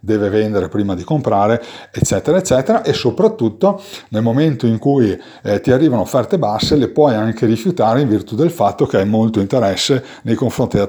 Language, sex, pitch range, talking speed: Italian, male, 105-130 Hz, 180 wpm